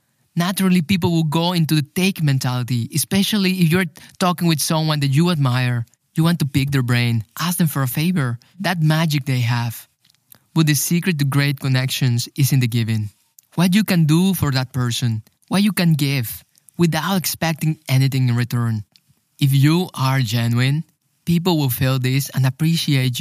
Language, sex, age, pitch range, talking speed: English, male, 20-39, 130-165 Hz, 175 wpm